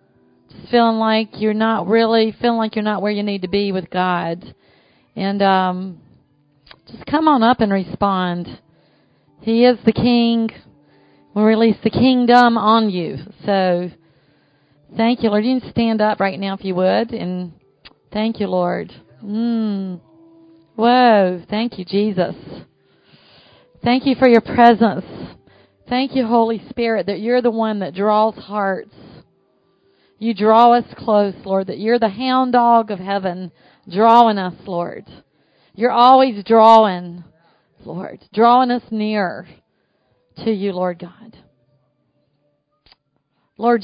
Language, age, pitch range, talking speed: English, 40-59, 180-230 Hz, 135 wpm